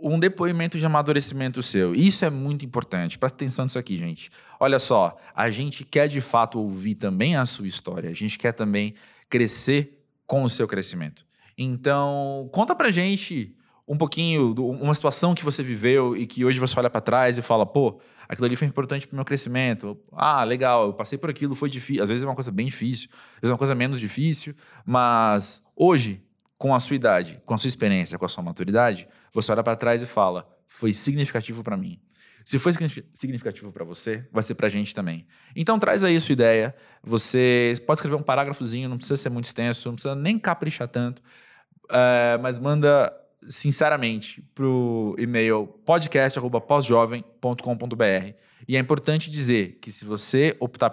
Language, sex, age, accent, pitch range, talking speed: Portuguese, male, 20-39, Brazilian, 115-140 Hz, 185 wpm